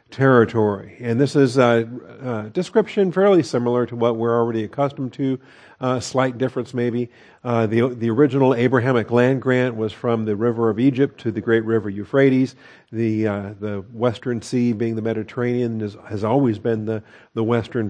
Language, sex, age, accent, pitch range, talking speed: English, male, 50-69, American, 115-135 Hz, 170 wpm